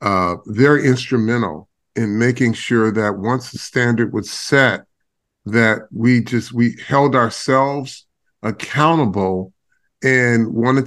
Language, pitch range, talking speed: English, 110-125 Hz, 115 wpm